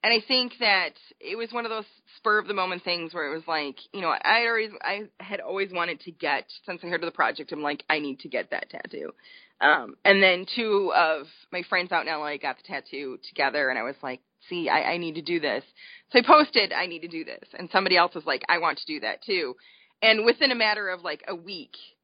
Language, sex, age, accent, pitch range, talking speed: English, female, 20-39, American, 165-230 Hz, 250 wpm